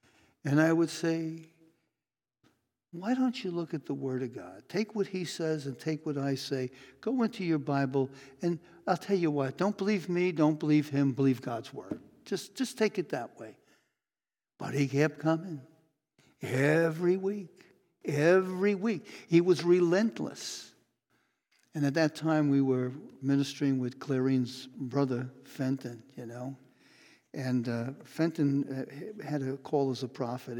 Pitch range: 135-175 Hz